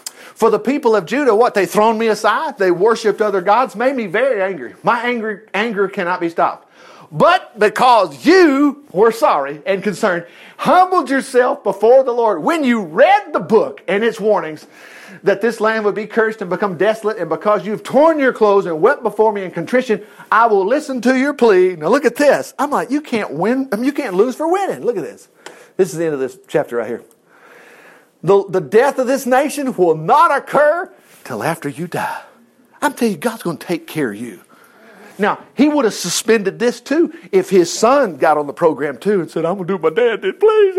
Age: 40-59